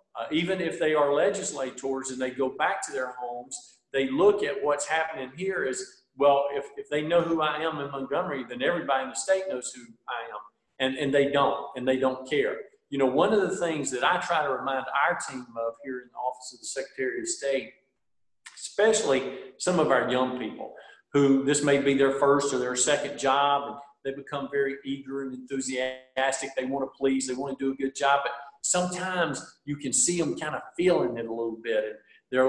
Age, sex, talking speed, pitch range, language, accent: 50-69, male, 220 wpm, 130-165 Hz, English, American